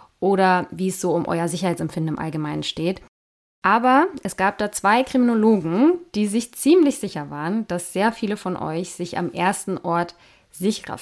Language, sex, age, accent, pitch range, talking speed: German, female, 20-39, German, 170-225 Hz, 170 wpm